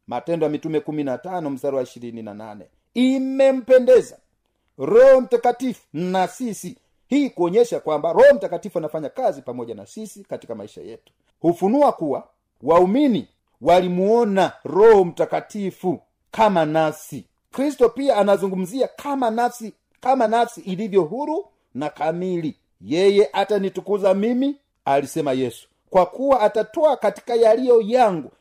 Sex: male